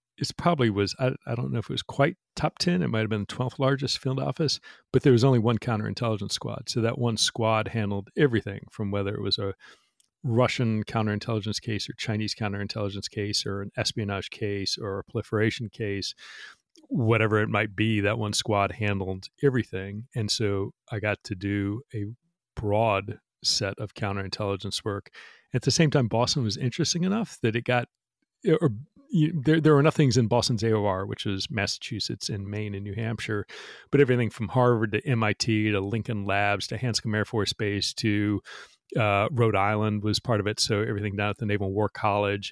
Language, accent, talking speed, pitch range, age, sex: English, American, 190 wpm, 100-120 Hz, 40-59, male